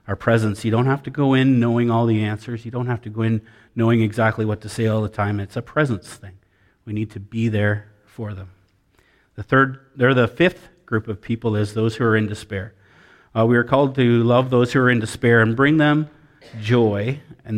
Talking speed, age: 230 wpm, 40-59